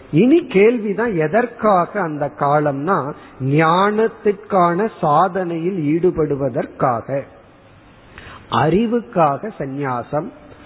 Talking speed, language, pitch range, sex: 55 wpm, Tamil, 155-205 Hz, male